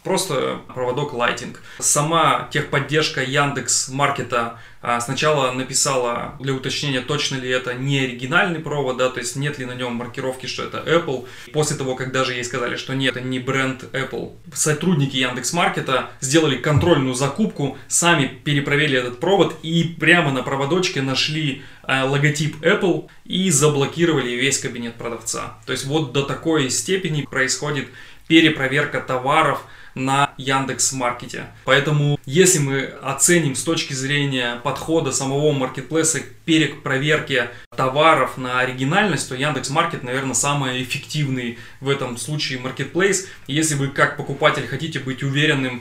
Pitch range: 130-150 Hz